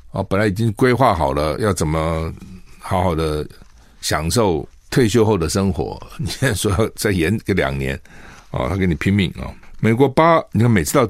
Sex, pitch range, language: male, 90-115 Hz, Chinese